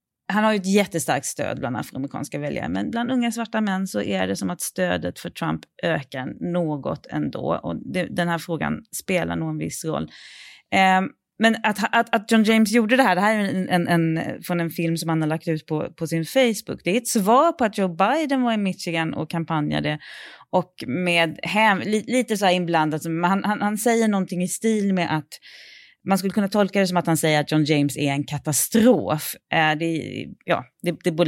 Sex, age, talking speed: female, 30-49, 200 wpm